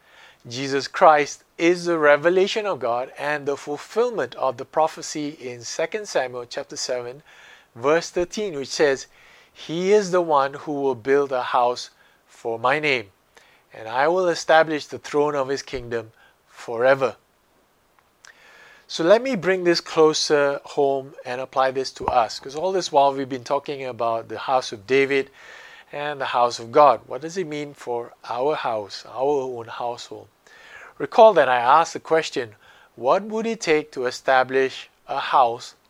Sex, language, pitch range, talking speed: male, English, 130-165 Hz, 160 wpm